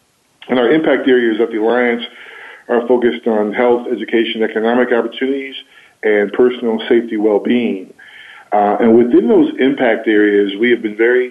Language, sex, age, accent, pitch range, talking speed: English, male, 50-69, American, 110-125 Hz, 150 wpm